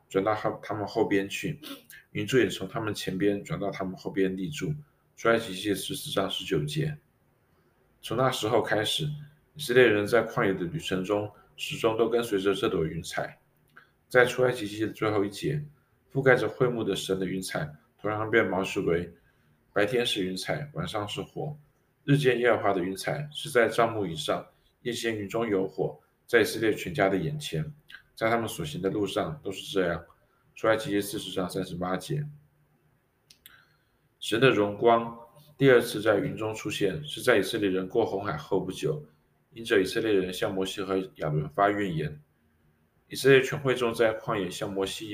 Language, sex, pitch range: Chinese, male, 95-130 Hz